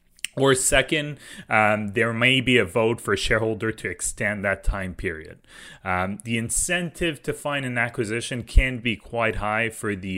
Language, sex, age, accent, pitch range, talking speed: English, male, 20-39, Canadian, 95-115 Hz, 170 wpm